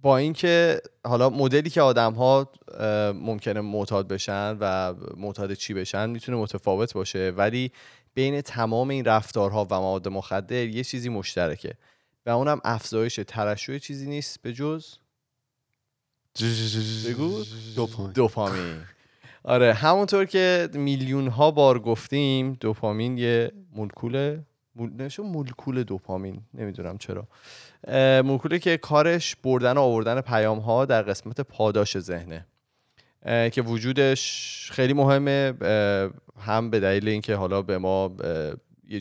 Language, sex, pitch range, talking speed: Persian, male, 105-135 Hz, 115 wpm